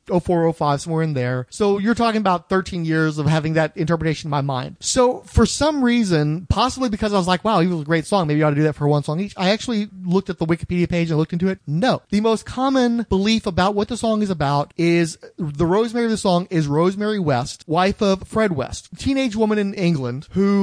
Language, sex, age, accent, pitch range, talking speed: English, male, 30-49, American, 165-210 Hz, 240 wpm